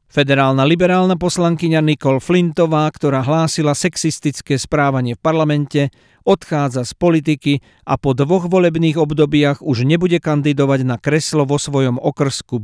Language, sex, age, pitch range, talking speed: Slovak, male, 50-69, 135-160 Hz, 130 wpm